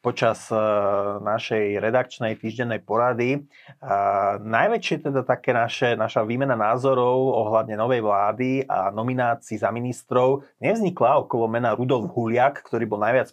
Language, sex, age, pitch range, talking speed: Slovak, male, 30-49, 115-130 Hz, 130 wpm